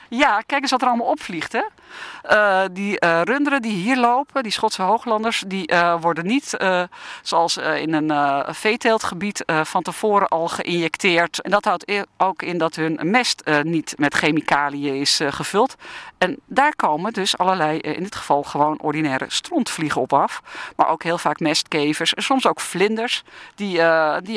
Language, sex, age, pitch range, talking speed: Dutch, female, 50-69, 165-235 Hz, 185 wpm